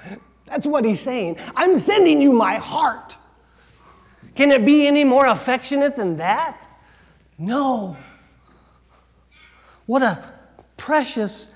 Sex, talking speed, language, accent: male, 110 wpm, English, American